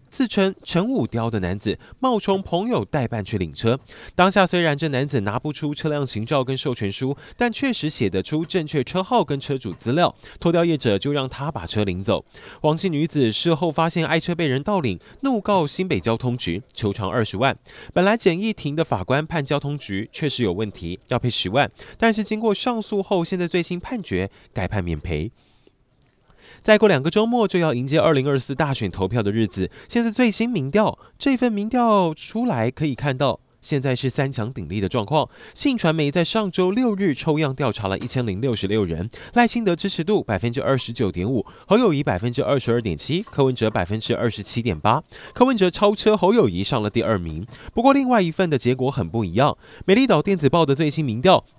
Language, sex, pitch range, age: Chinese, male, 115-185 Hz, 20-39